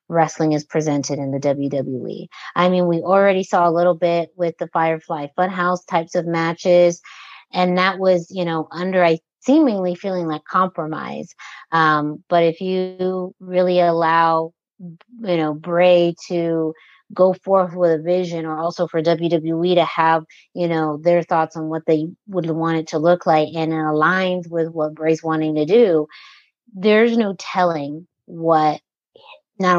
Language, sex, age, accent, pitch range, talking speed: English, female, 30-49, American, 160-185 Hz, 160 wpm